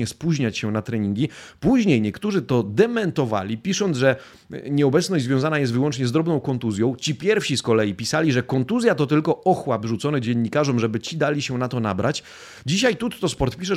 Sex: male